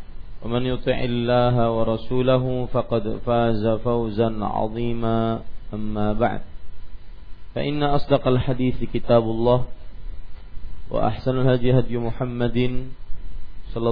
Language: Malay